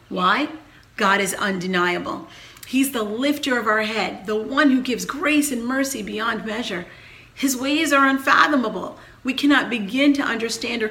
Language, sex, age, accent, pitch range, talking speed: English, female, 40-59, American, 210-270 Hz, 160 wpm